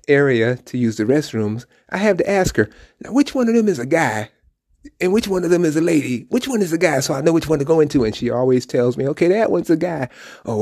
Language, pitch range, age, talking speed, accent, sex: English, 120-185 Hz, 30-49, 285 wpm, American, male